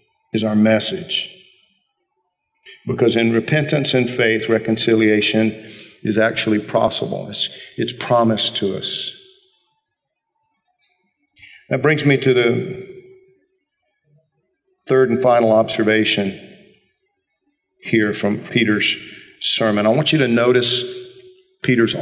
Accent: American